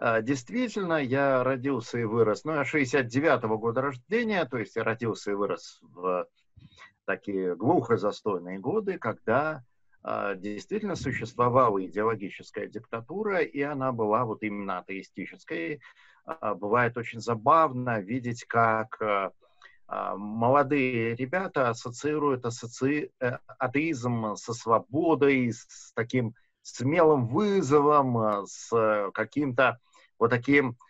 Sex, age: male, 50-69